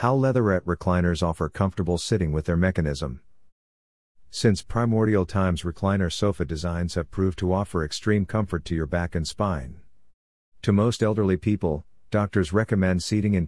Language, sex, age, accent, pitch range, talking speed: English, male, 50-69, American, 85-100 Hz, 150 wpm